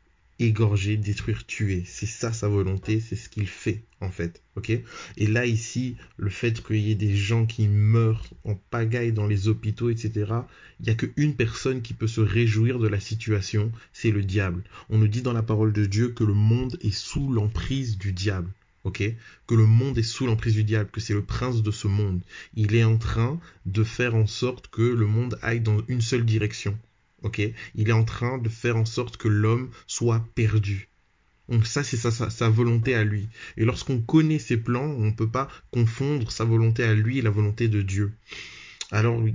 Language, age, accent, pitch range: French, 20-39, French, 105-120 Hz